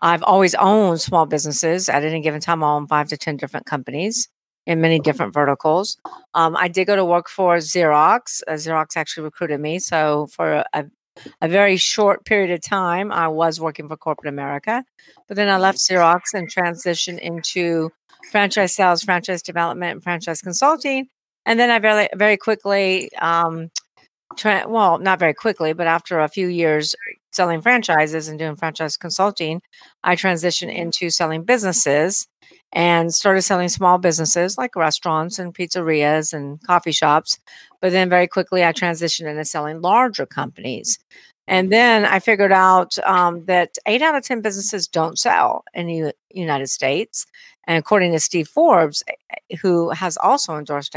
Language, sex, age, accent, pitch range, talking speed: Filipino, female, 50-69, American, 160-195 Hz, 165 wpm